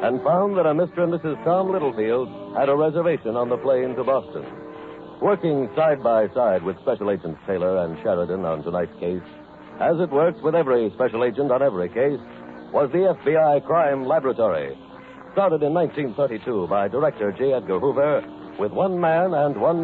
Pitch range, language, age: 120-170 Hz, English, 60-79